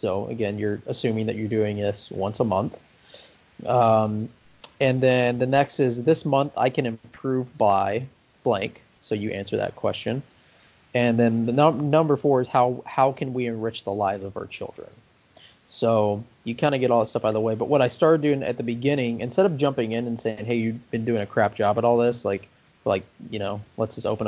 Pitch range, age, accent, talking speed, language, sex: 110-135 Hz, 30-49, American, 220 wpm, English, male